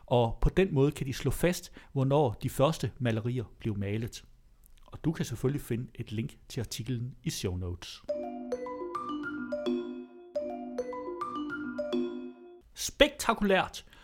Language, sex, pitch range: Danish, male, 115-175 Hz